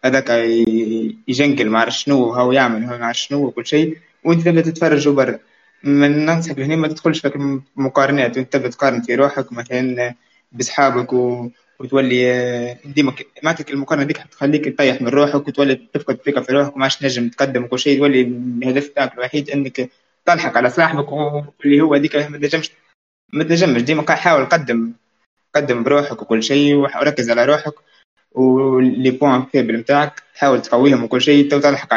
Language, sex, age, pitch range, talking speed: Arabic, male, 20-39, 120-140 Hz, 160 wpm